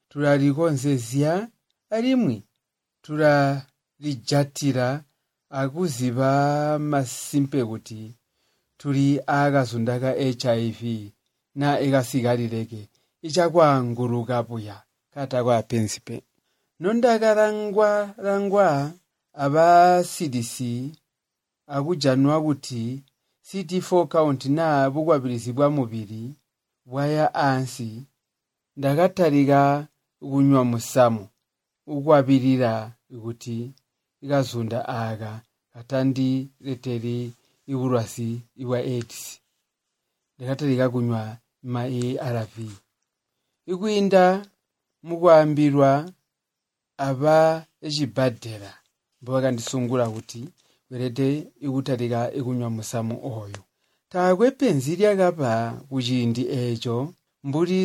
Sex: male